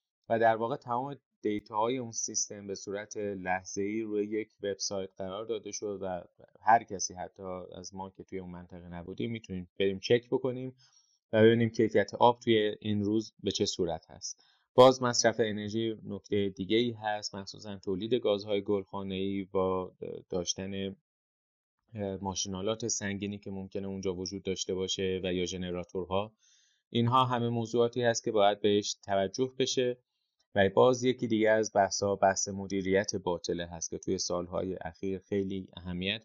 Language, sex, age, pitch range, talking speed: Persian, male, 20-39, 95-110 Hz, 160 wpm